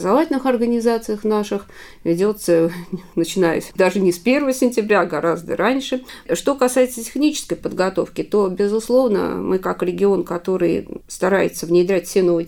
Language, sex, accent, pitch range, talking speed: Russian, female, native, 170-225 Hz, 130 wpm